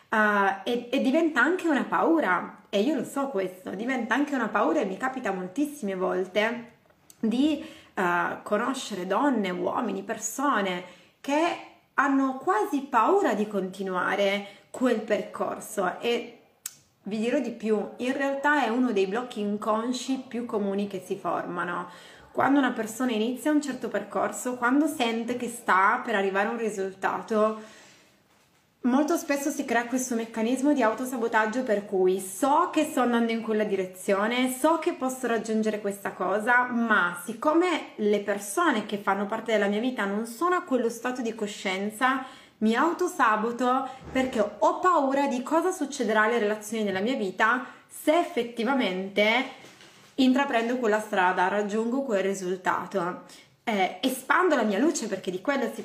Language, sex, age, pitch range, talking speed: Italian, female, 30-49, 205-265 Hz, 145 wpm